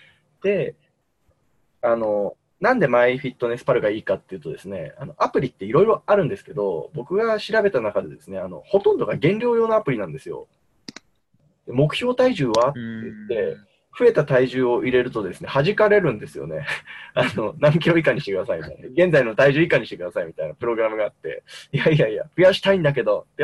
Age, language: 20-39, Japanese